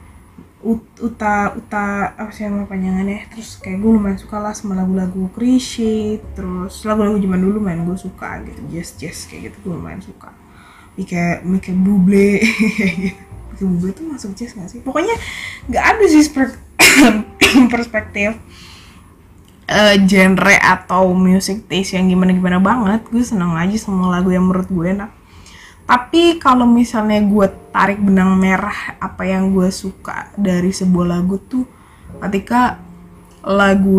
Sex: female